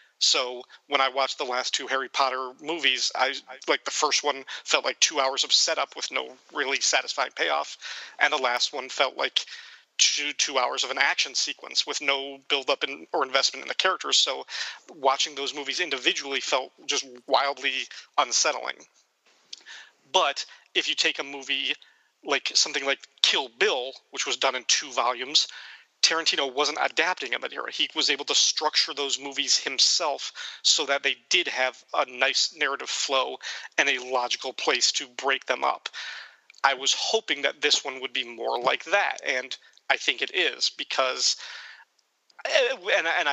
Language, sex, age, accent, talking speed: English, male, 40-59, American, 170 wpm